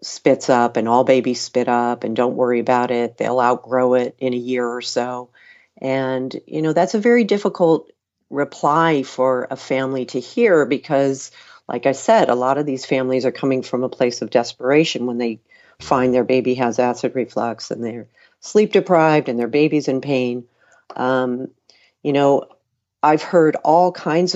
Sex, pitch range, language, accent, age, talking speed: female, 120-140 Hz, English, American, 50-69, 180 wpm